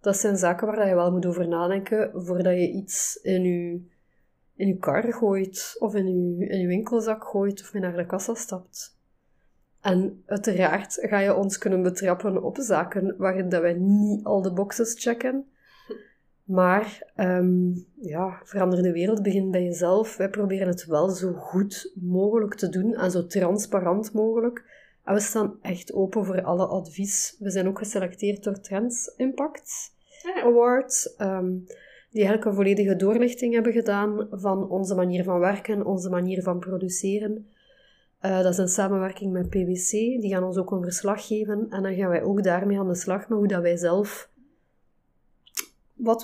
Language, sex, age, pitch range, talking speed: Dutch, female, 30-49, 185-215 Hz, 165 wpm